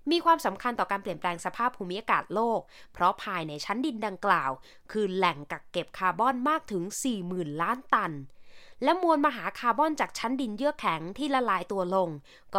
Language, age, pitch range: Thai, 20-39, 185-265 Hz